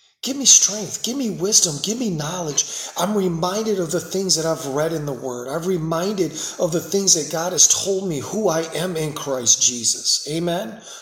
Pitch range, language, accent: 150-225 Hz, English, American